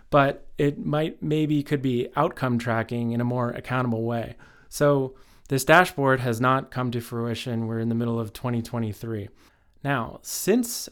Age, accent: 20-39, American